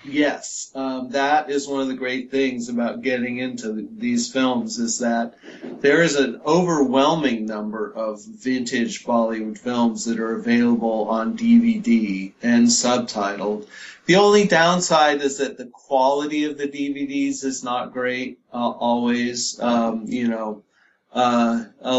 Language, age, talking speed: English, 40-59, 145 wpm